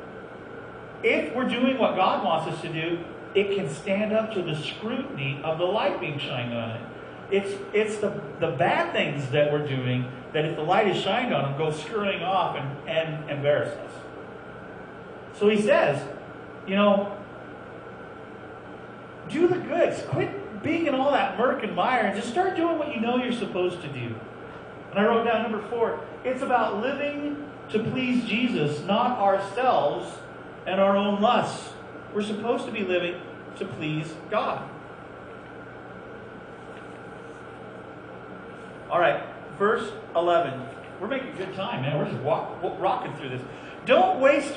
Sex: male